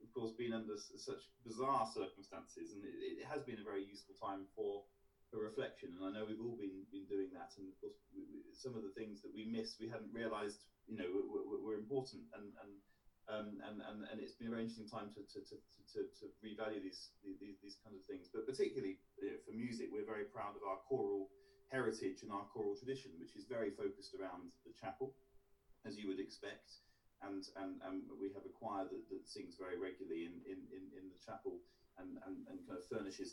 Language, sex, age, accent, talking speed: English, male, 30-49, British, 225 wpm